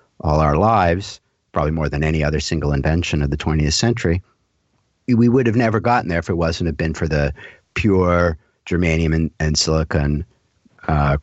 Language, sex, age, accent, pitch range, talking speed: English, male, 50-69, American, 80-105 Hz, 175 wpm